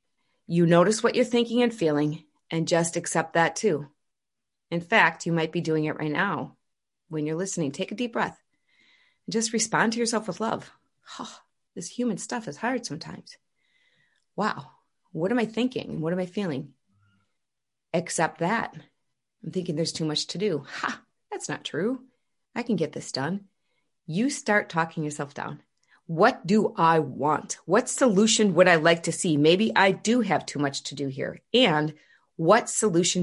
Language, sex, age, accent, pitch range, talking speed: English, female, 30-49, American, 155-220 Hz, 175 wpm